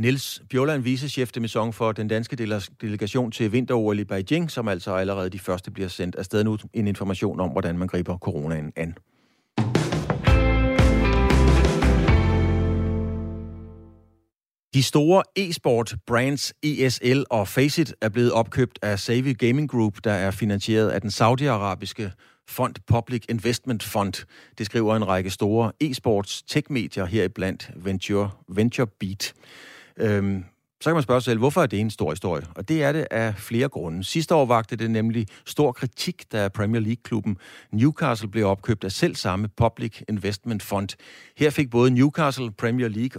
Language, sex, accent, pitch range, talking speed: Danish, male, native, 100-125 Hz, 150 wpm